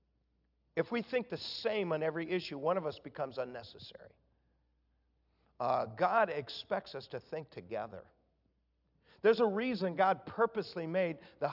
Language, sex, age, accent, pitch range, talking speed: English, male, 50-69, American, 135-190 Hz, 140 wpm